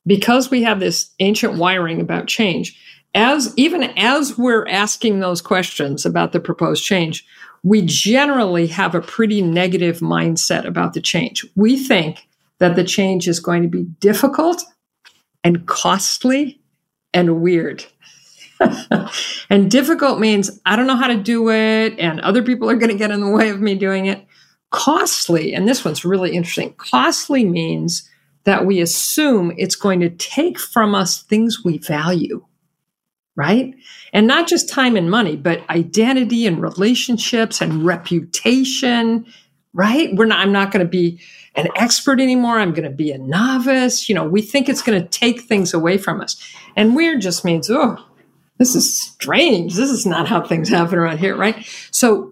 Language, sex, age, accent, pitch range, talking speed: English, female, 50-69, American, 175-240 Hz, 170 wpm